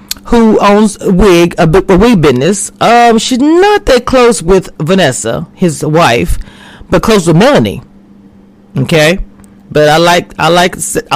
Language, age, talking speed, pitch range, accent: English, 30-49, 140 wpm, 150-215 Hz, American